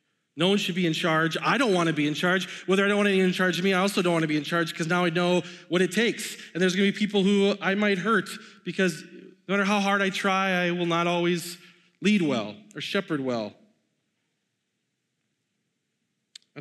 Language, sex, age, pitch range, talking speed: English, male, 30-49, 160-205 Hz, 230 wpm